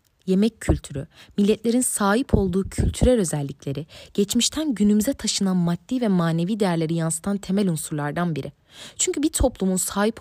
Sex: female